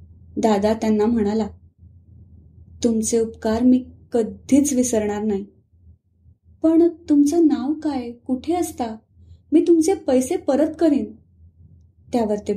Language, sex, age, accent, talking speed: Marathi, female, 20-39, native, 75 wpm